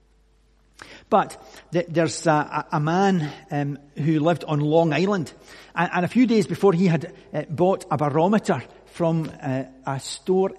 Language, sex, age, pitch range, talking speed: English, male, 50-69, 150-210 Hz, 155 wpm